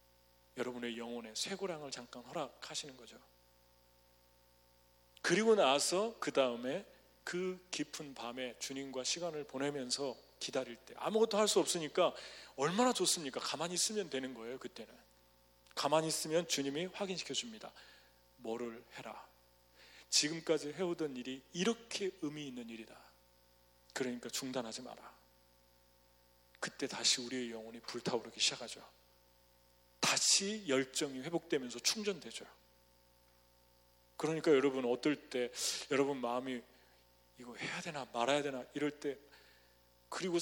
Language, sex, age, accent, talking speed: English, male, 40-59, Korean, 100 wpm